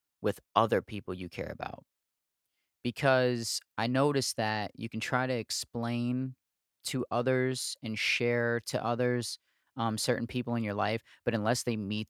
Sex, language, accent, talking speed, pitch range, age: male, English, American, 155 wpm, 100-120 Hz, 30-49